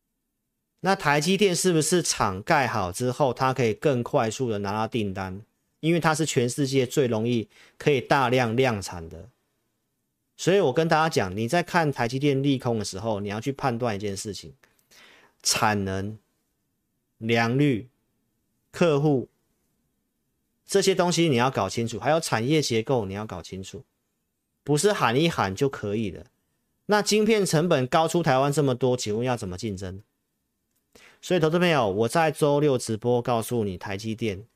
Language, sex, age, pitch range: Chinese, male, 40-59, 110-150 Hz